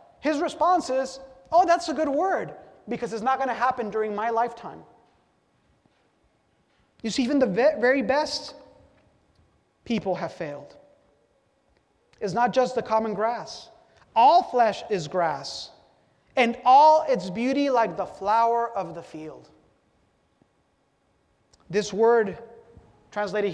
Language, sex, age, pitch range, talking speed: English, male, 30-49, 190-235 Hz, 125 wpm